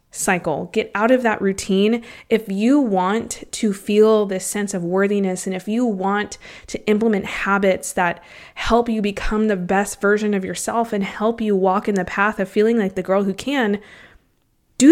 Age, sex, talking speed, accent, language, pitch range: 20-39, female, 185 wpm, American, English, 195-230 Hz